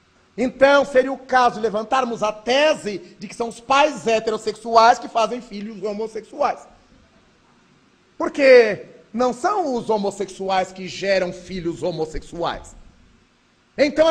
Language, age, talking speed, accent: Portuguese, 40-59, 120 wpm, Brazilian